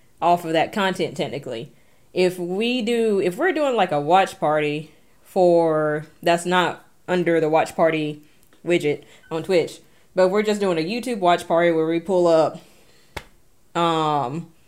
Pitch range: 160-185 Hz